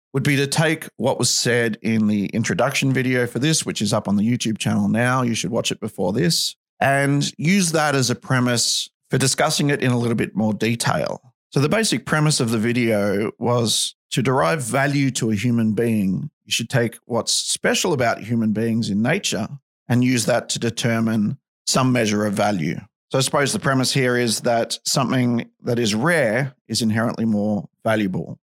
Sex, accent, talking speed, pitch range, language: male, Australian, 195 wpm, 105-135 Hz, English